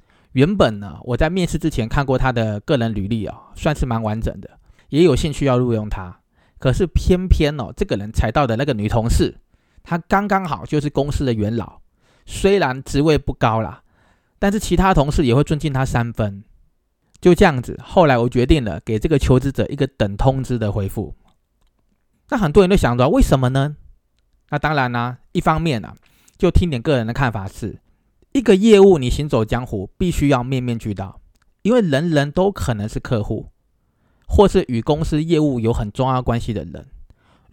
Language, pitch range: Chinese, 110-150 Hz